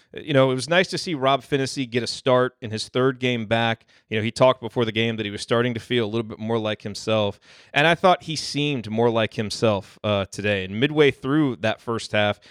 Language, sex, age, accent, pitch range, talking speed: English, male, 30-49, American, 115-140 Hz, 250 wpm